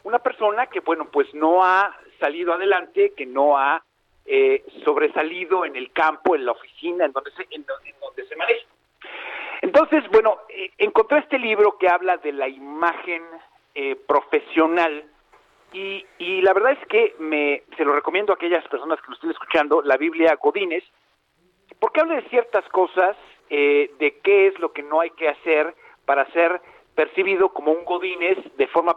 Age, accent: 50-69, Mexican